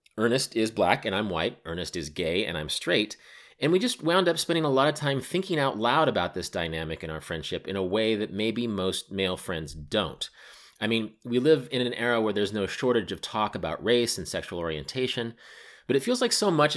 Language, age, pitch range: English, 30-49, 95-135 Hz